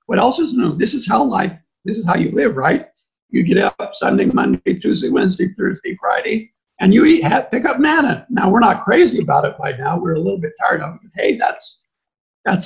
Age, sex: 50-69, male